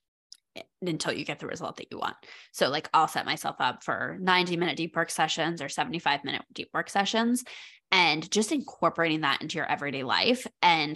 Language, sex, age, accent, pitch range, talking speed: English, female, 20-39, American, 160-230 Hz, 190 wpm